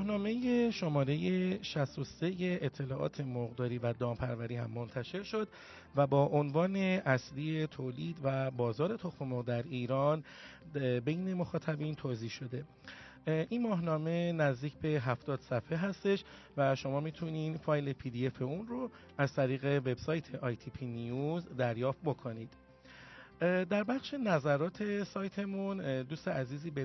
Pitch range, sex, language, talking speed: 130-170 Hz, male, Persian, 120 wpm